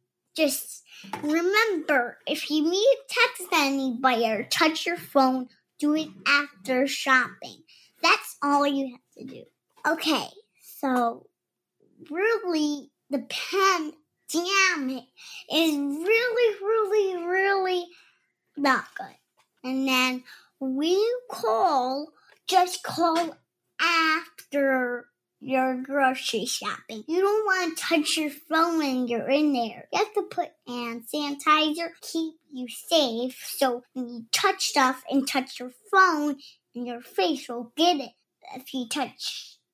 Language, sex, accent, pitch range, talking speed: English, male, American, 260-360 Hz, 130 wpm